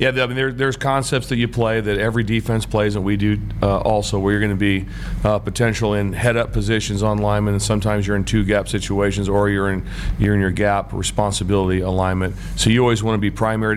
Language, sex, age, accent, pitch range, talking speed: English, male, 40-59, American, 95-110 Hz, 225 wpm